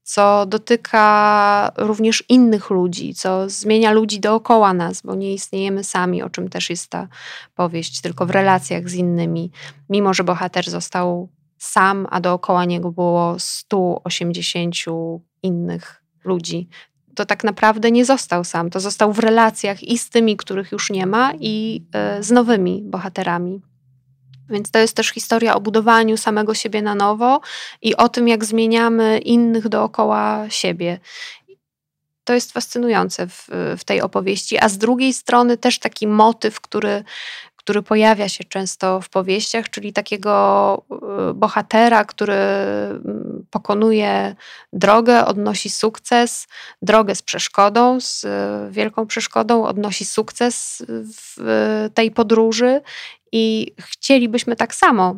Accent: native